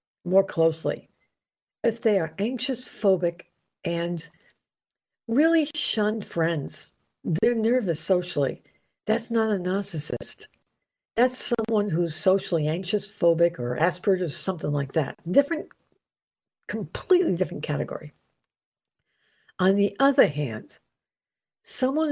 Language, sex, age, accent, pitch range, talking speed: English, female, 60-79, American, 165-235 Hz, 105 wpm